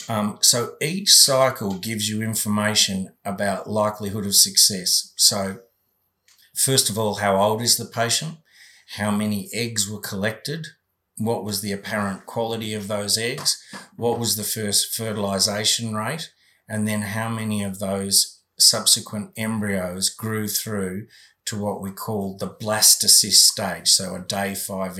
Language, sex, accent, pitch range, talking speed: English, male, Australian, 100-115 Hz, 145 wpm